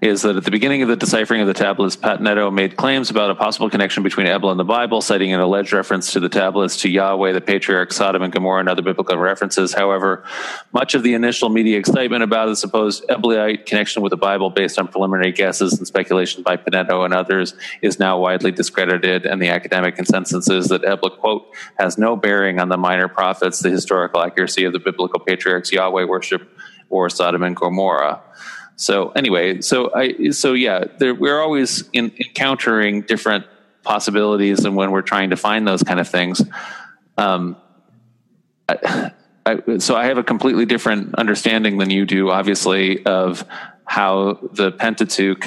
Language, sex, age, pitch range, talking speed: English, male, 30-49, 95-105 Hz, 185 wpm